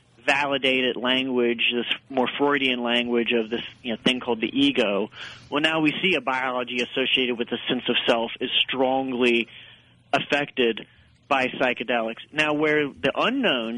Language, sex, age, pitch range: English, male, 40-59, 120-140 Hz